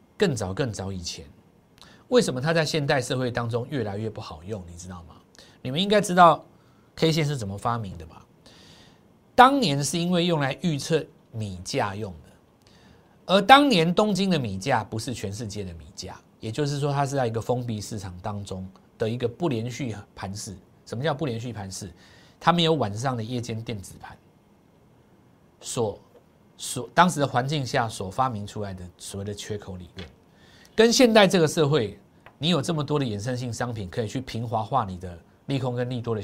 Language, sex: Chinese, male